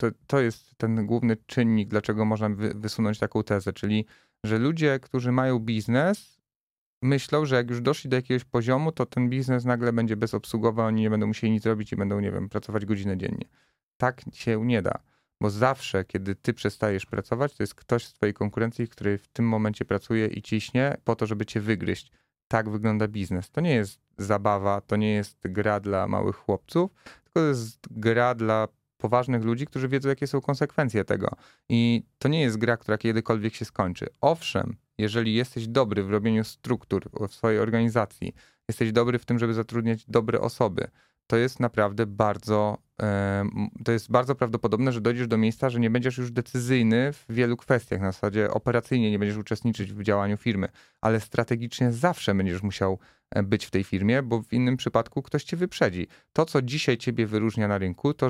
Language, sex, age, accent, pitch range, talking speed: Polish, male, 30-49, native, 105-125 Hz, 185 wpm